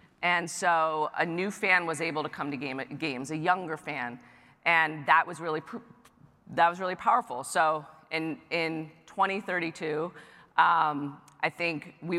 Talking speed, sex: 155 wpm, female